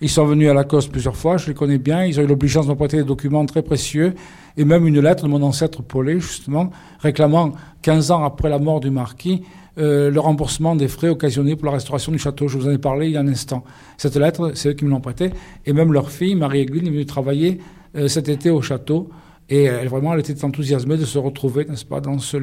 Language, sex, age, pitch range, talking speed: French, male, 50-69, 140-155 Hz, 250 wpm